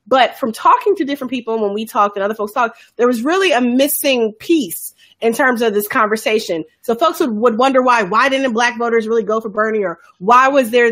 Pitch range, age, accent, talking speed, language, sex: 215-265 Hz, 30-49, American, 230 wpm, English, female